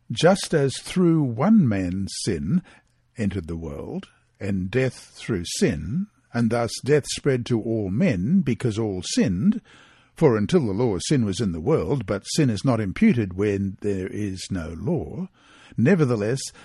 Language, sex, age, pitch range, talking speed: English, male, 60-79, 110-165 Hz, 160 wpm